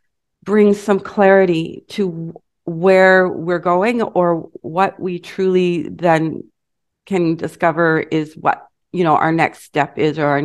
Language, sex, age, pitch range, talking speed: English, female, 40-59, 160-190 Hz, 140 wpm